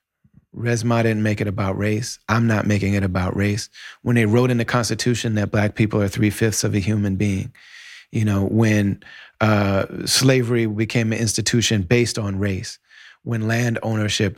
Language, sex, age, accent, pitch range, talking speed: English, male, 30-49, American, 105-115 Hz, 175 wpm